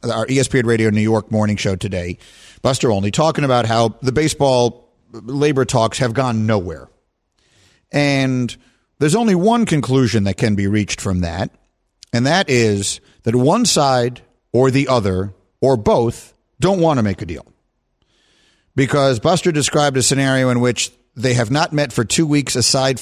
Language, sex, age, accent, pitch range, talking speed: English, male, 50-69, American, 105-145 Hz, 165 wpm